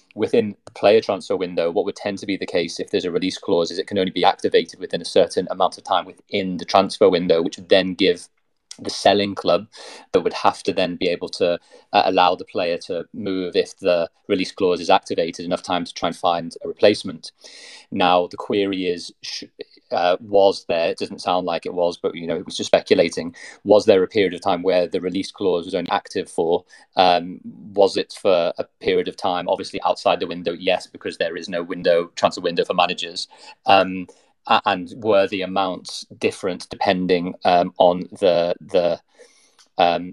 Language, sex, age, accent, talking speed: English, male, 30-49, British, 200 wpm